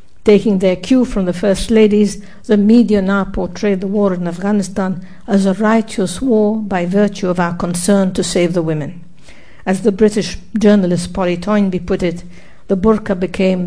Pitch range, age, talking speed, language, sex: 185-210 Hz, 60-79, 170 wpm, English, female